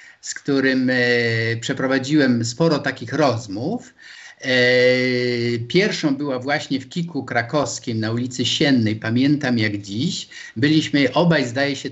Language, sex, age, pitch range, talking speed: Polish, male, 50-69, 120-150 Hz, 110 wpm